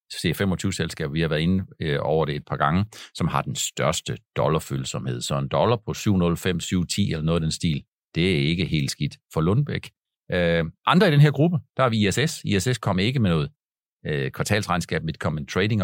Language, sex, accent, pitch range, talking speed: Danish, male, native, 85-110 Hz, 205 wpm